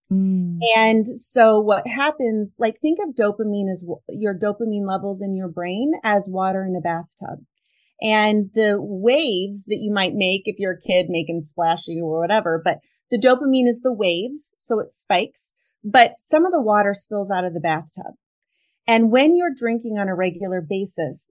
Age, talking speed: 30-49, 175 wpm